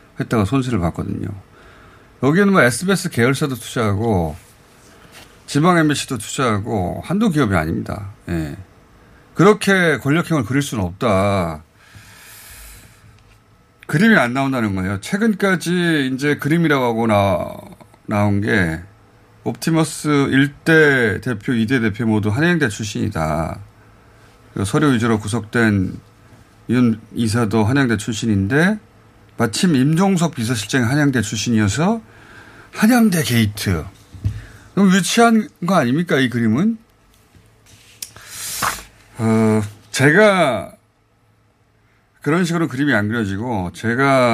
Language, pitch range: Korean, 100-135 Hz